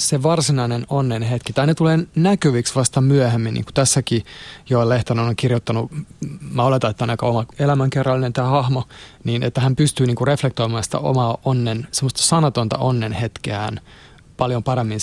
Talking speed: 160 wpm